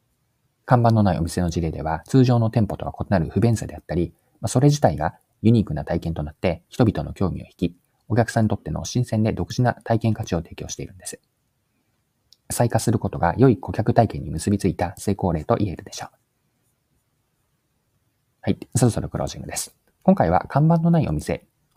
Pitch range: 90-125 Hz